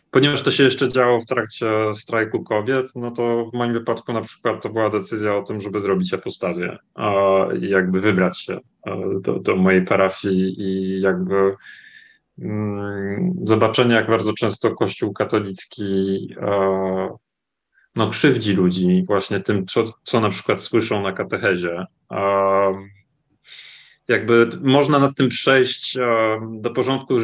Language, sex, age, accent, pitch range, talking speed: English, male, 20-39, Polish, 100-130 Hz, 140 wpm